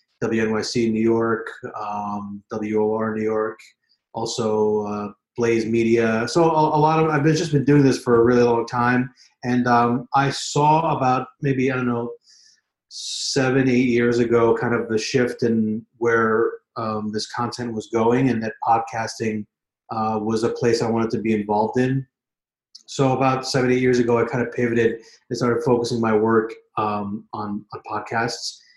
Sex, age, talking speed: male, 30-49, 175 wpm